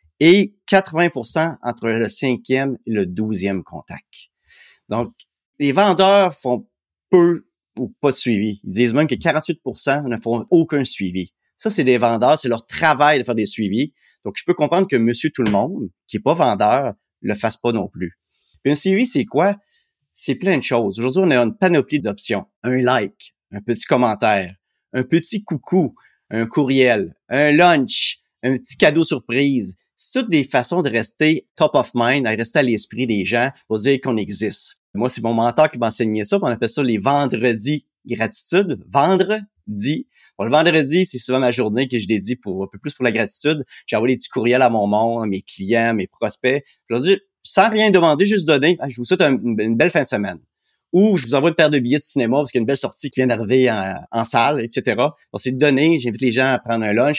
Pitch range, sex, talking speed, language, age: 115-155 Hz, male, 210 wpm, French, 30-49